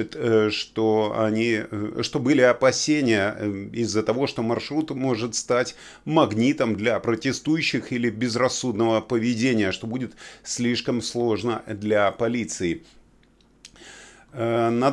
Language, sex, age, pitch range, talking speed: Russian, male, 30-49, 110-135 Hz, 90 wpm